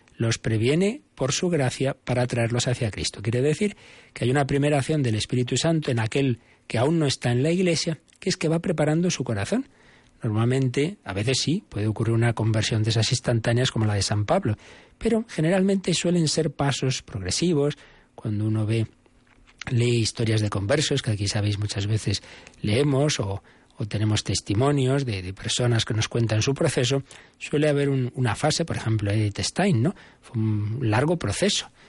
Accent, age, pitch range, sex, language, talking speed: Spanish, 40-59, 110-145 Hz, male, Spanish, 180 wpm